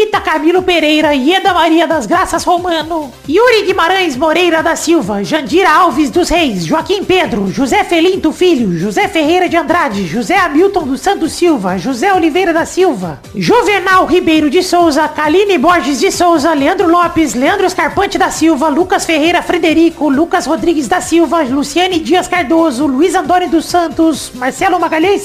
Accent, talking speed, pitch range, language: Brazilian, 155 wpm, 310-360 Hz, Portuguese